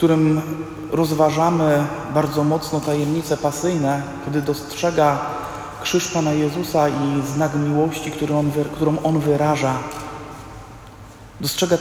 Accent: native